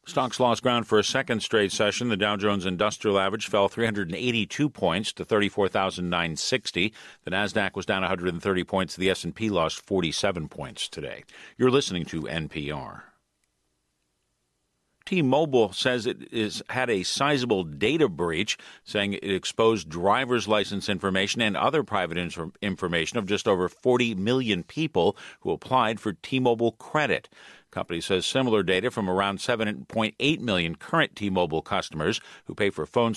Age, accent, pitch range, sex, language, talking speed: 50-69, American, 95-115 Hz, male, English, 145 wpm